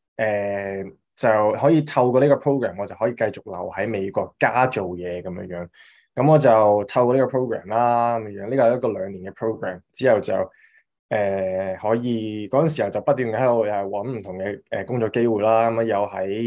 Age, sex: 20-39, male